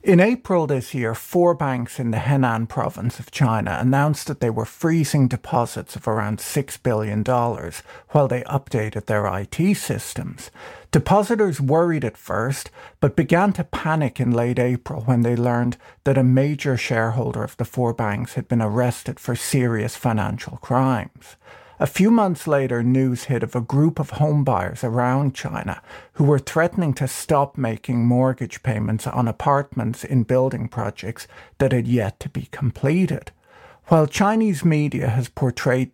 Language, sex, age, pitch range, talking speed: English, male, 50-69, 120-145 Hz, 155 wpm